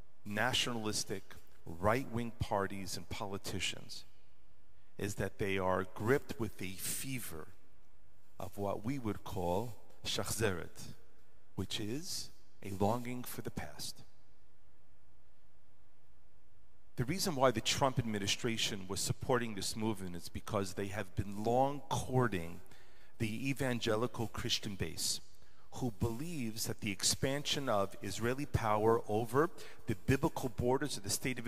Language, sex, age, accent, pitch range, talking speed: English, male, 40-59, American, 100-130 Hz, 120 wpm